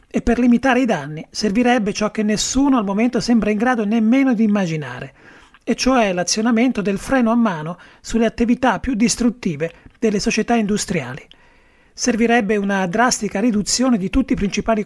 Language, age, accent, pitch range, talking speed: Italian, 30-49, native, 185-235 Hz, 160 wpm